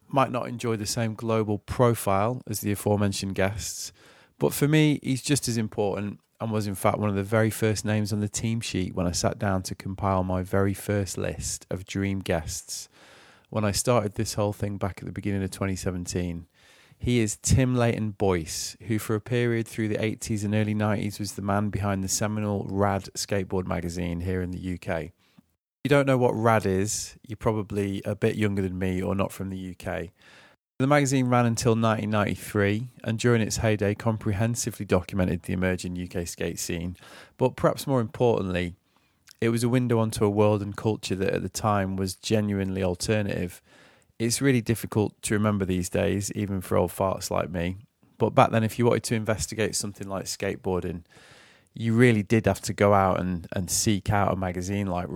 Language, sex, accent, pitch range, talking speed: English, male, British, 95-115 Hz, 190 wpm